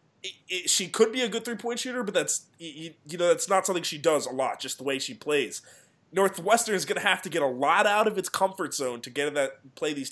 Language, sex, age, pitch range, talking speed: English, male, 20-39, 145-190 Hz, 280 wpm